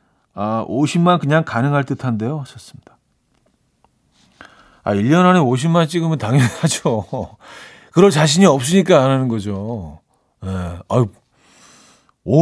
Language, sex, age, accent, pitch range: Korean, male, 40-59, native, 115-165 Hz